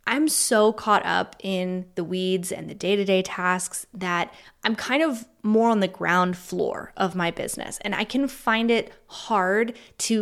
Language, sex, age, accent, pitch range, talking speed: English, female, 20-39, American, 180-215 Hz, 175 wpm